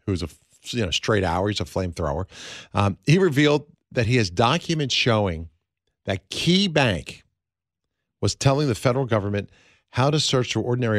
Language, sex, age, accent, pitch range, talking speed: English, male, 50-69, American, 95-125 Hz, 165 wpm